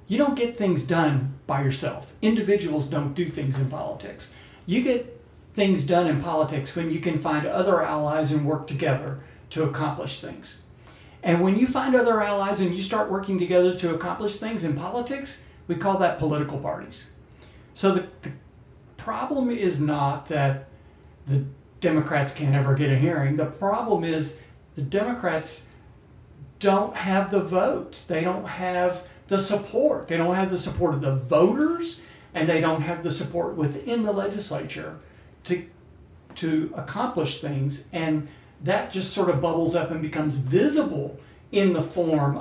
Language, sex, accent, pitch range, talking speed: English, male, American, 150-200 Hz, 160 wpm